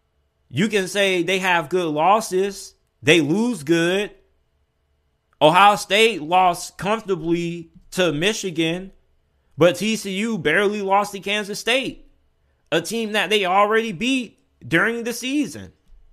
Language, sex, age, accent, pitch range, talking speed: English, male, 20-39, American, 150-195 Hz, 120 wpm